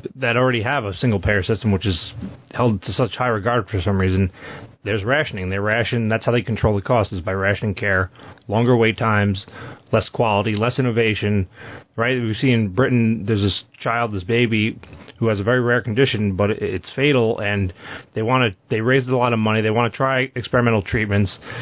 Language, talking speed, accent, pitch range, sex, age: English, 205 wpm, American, 105-125 Hz, male, 30-49